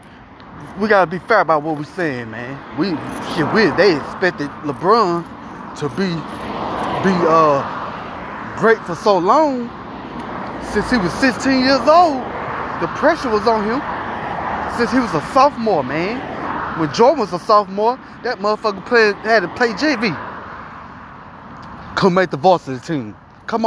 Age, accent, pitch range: 20-39, American, 145-220 Hz